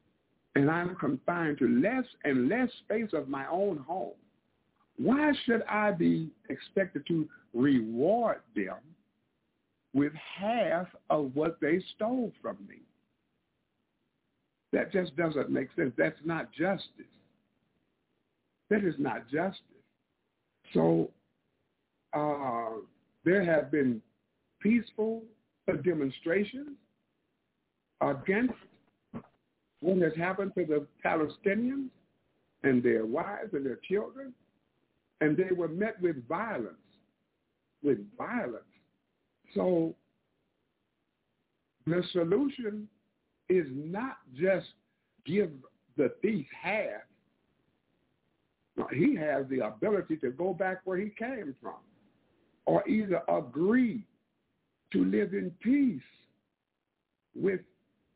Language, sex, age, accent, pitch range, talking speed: English, male, 60-79, American, 150-215 Hz, 100 wpm